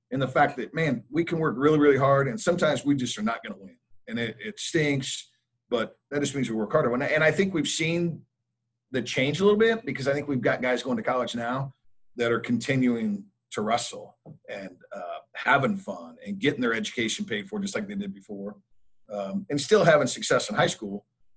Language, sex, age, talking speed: English, male, 50-69, 225 wpm